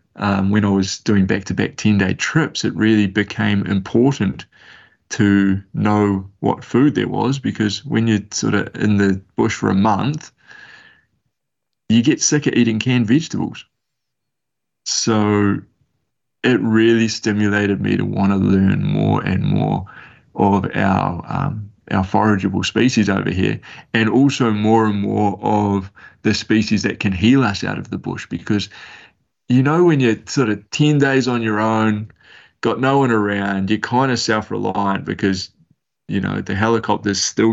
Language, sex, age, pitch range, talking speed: English, male, 20-39, 100-115 Hz, 155 wpm